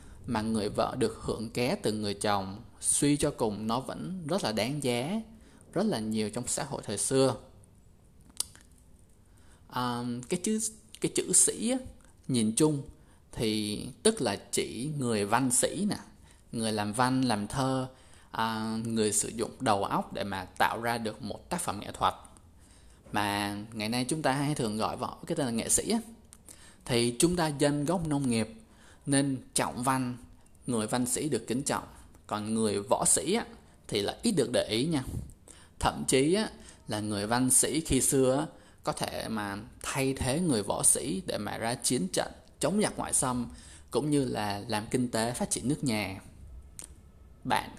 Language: Vietnamese